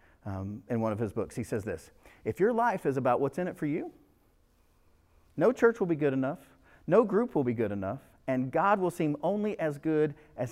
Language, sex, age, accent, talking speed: English, male, 50-69, American, 220 wpm